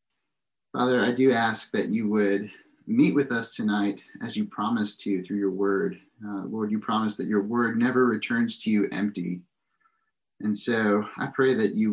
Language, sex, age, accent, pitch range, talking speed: English, male, 30-49, American, 100-125 Hz, 180 wpm